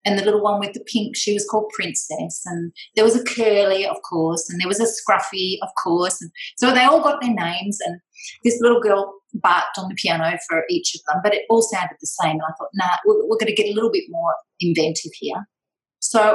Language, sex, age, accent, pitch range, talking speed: English, female, 30-49, Australian, 195-285 Hz, 240 wpm